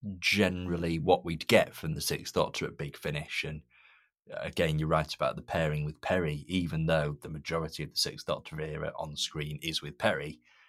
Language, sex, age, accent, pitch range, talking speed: English, male, 30-49, British, 80-100 Hz, 190 wpm